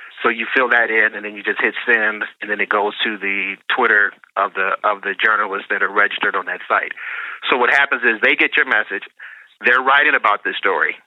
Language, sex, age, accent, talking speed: English, male, 40-59, American, 230 wpm